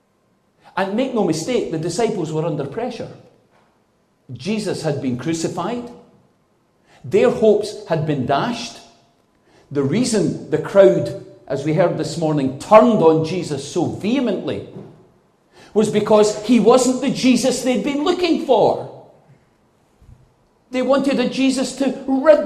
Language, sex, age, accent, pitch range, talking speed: English, male, 40-59, British, 150-240 Hz, 130 wpm